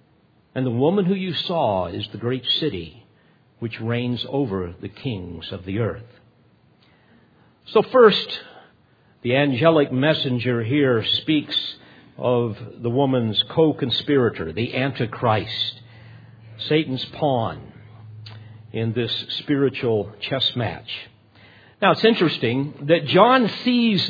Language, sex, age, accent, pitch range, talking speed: English, male, 50-69, American, 125-180 Hz, 110 wpm